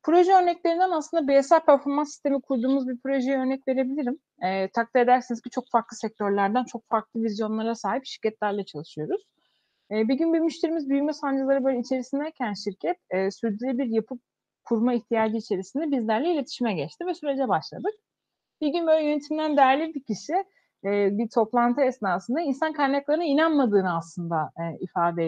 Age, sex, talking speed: 30-49, female, 150 wpm